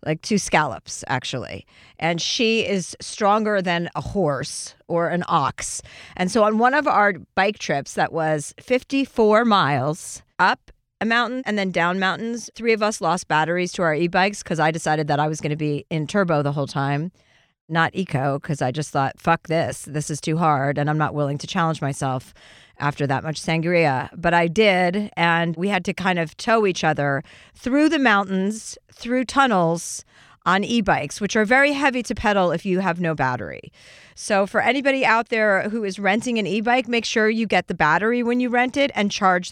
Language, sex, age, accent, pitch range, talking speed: English, female, 40-59, American, 155-215 Hz, 200 wpm